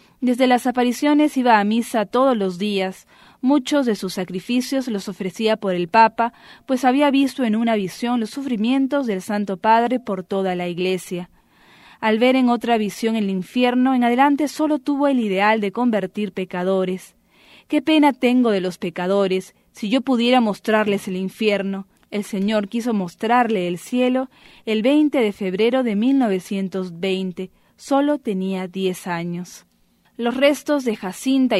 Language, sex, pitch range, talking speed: English, female, 190-250 Hz, 155 wpm